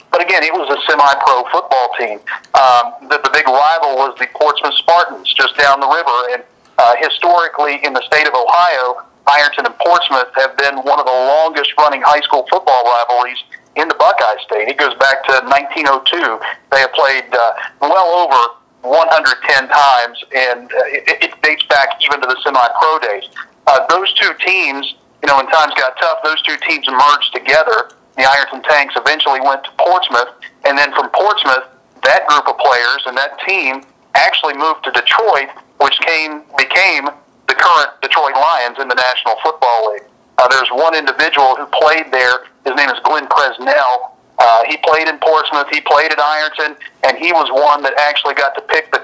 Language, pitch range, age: English, 130-150 Hz, 40-59